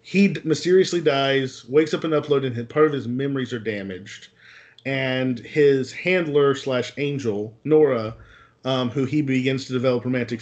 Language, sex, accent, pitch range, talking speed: English, male, American, 120-150 Hz, 155 wpm